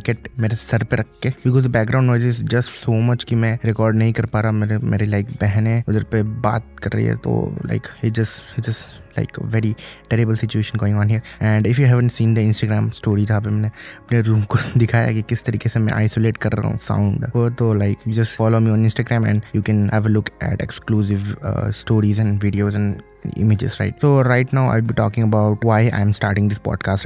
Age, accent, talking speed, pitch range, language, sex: 20-39, native, 220 wpm, 105-115 Hz, Hindi, male